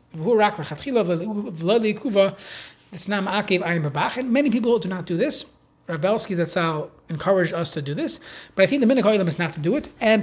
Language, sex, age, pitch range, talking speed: English, male, 30-49, 170-225 Hz, 155 wpm